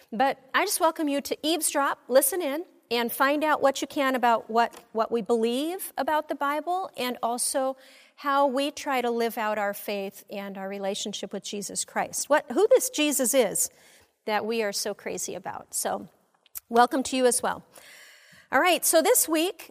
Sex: female